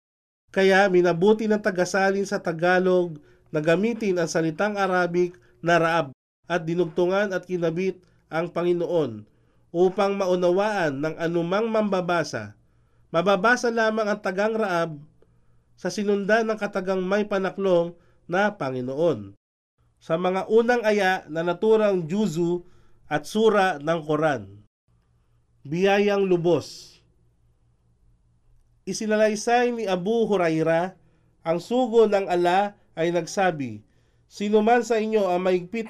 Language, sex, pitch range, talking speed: Filipino, male, 165-200 Hz, 110 wpm